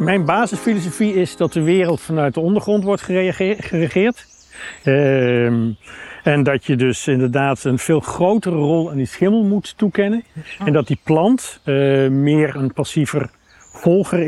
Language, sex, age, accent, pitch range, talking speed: Dutch, male, 50-69, Dutch, 125-175 Hz, 145 wpm